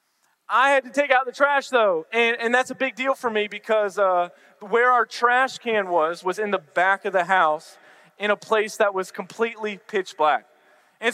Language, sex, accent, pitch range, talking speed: English, male, American, 185-240 Hz, 210 wpm